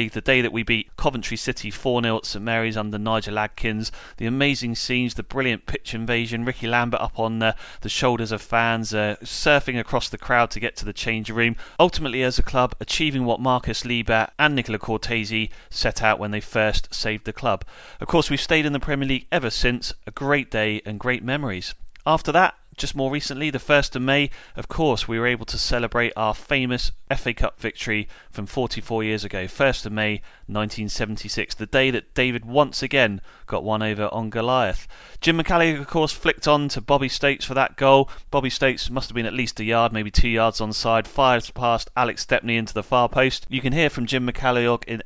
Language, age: English, 30-49